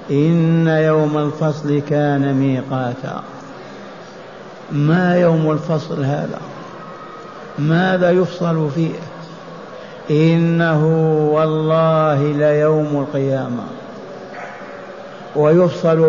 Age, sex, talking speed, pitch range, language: 60-79, male, 65 wpm, 160-180 Hz, Arabic